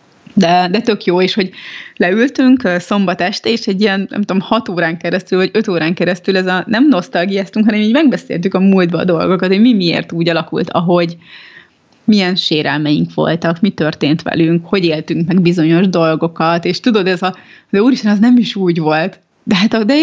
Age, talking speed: 30-49, 190 wpm